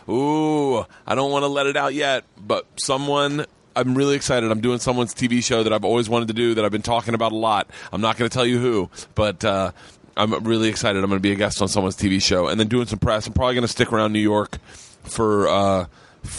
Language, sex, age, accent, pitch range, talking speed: English, male, 30-49, American, 105-130 Hz, 250 wpm